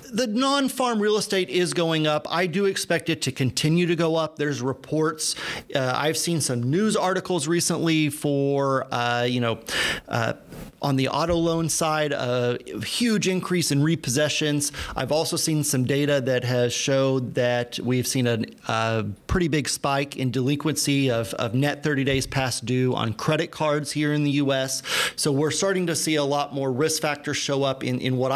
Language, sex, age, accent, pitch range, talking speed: English, male, 40-59, American, 125-155 Hz, 180 wpm